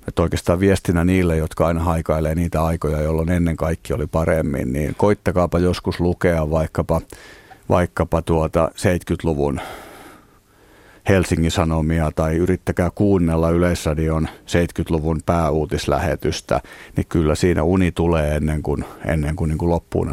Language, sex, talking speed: Finnish, male, 125 wpm